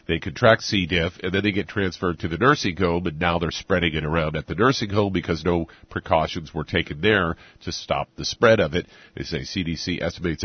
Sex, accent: male, American